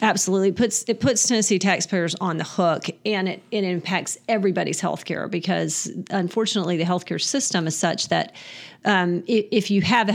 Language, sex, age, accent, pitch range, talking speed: English, female, 40-59, American, 175-210 Hz, 185 wpm